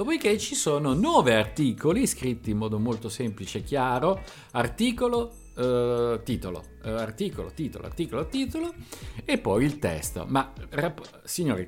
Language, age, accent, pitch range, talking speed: Italian, 50-69, native, 100-130 Hz, 140 wpm